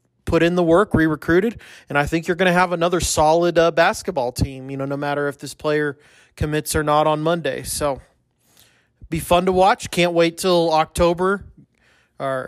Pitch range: 140-165 Hz